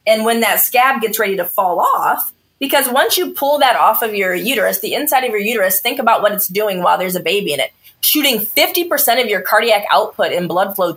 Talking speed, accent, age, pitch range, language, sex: 235 wpm, American, 20-39, 190-290 Hz, English, female